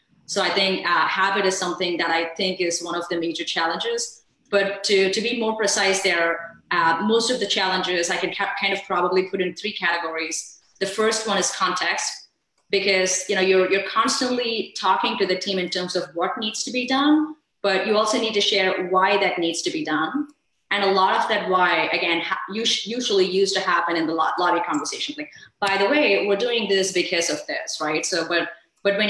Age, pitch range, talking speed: 20-39, 175-210 Hz, 215 wpm